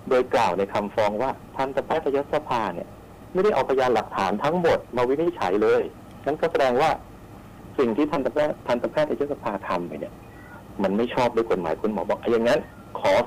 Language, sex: Thai, male